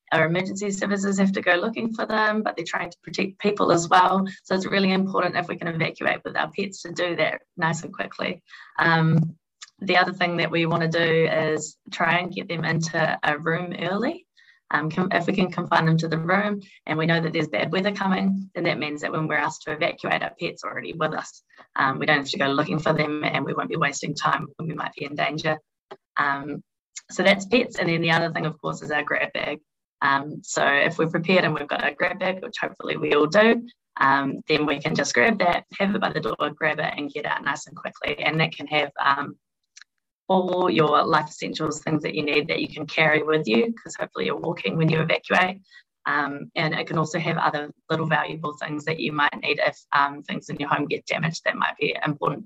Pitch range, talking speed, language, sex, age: 155-185 Hz, 235 wpm, English, female, 20-39